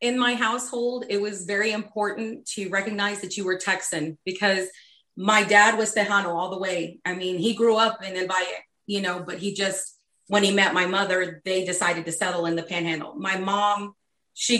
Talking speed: 200 wpm